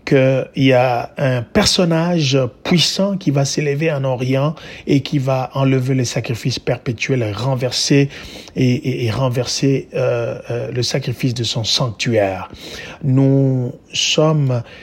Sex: male